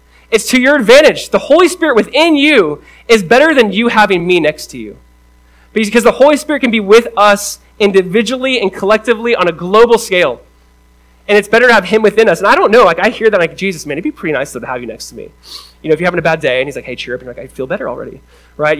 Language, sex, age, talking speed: English, male, 20-39, 270 wpm